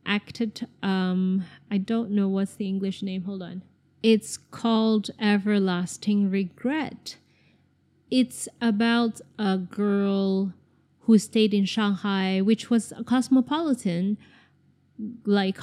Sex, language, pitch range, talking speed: female, English, 180-210 Hz, 110 wpm